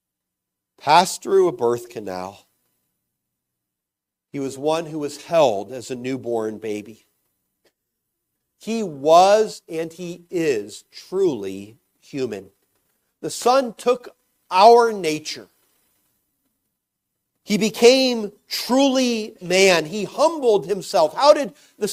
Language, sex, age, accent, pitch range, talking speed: English, male, 50-69, American, 165-245 Hz, 100 wpm